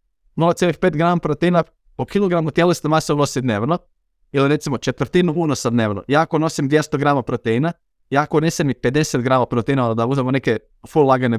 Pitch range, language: 130-170 Hz, Croatian